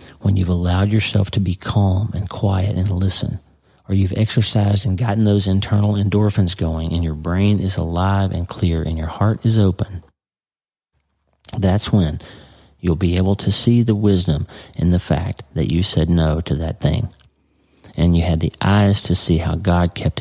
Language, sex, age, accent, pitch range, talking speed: English, male, 40-59, American, 85-100 Hz, 180 wpm